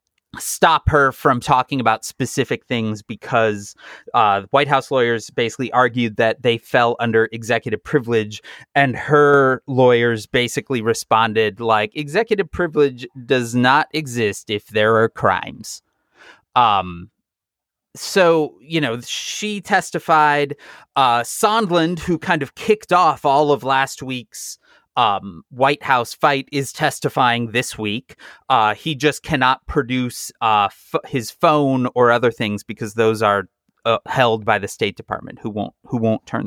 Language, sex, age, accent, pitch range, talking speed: English, male, 30-49, American, 115-150 Hz, 140 wpm